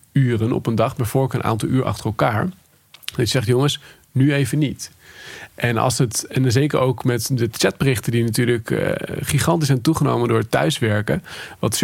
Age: 40-59